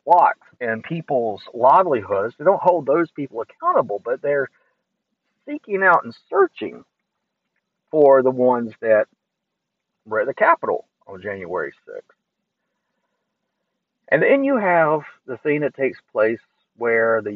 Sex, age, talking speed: male, 50-69, 130 wpm